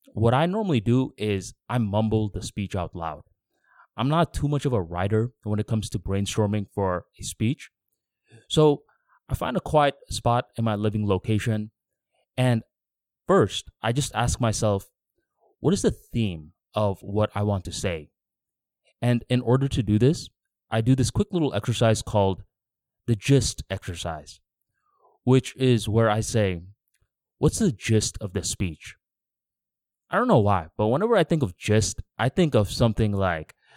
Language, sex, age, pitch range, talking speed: English, male, 20-39, 100-120 Hz, 165 wpm